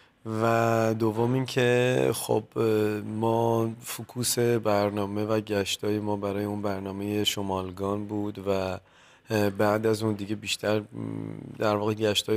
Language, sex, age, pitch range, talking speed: Persian, male, 30-49, 95-105 Hz, 120 wpm